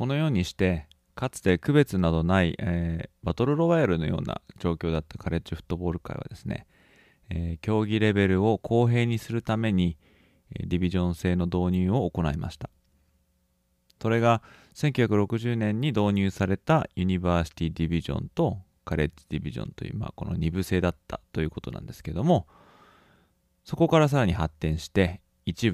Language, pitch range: Japanese, 85-110 Hz